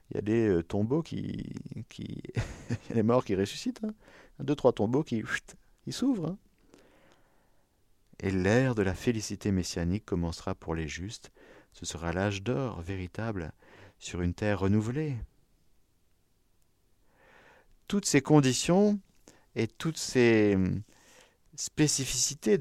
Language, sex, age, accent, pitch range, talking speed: French, male, 50-69, French, 95-135 Hz, 135 wpm